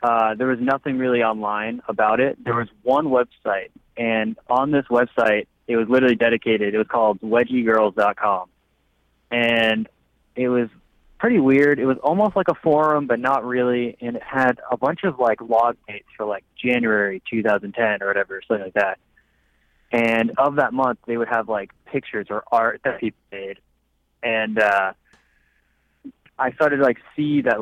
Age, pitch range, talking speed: 20-39, 105-125 Hz, 170 wpm